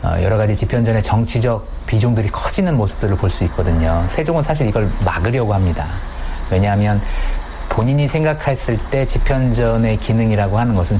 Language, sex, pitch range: Korean, male, 95-120 Hz